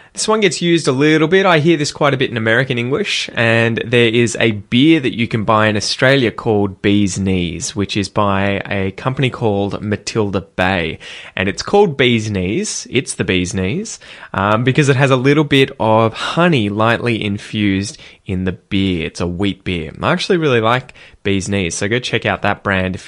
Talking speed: 205 wpm